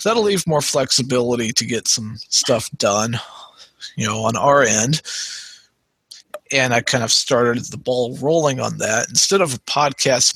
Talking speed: 160 wpm